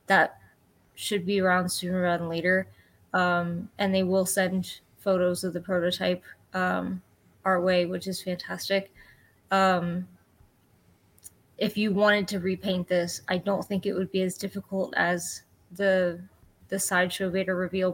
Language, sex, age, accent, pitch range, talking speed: English, female, 20-39, American, 175-195 Hz, 145 wpm